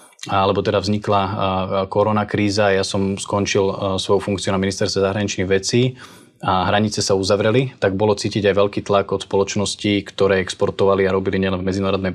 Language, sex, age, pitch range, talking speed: Slovak, male, 20-39, 95-105 Hz, 160 wpm